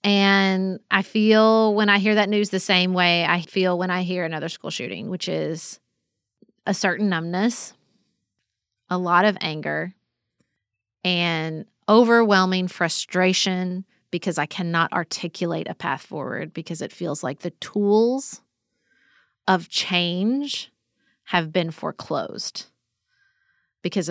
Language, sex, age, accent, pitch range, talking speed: English, female, 30-49, American, 175-215 Hz, 125 wpm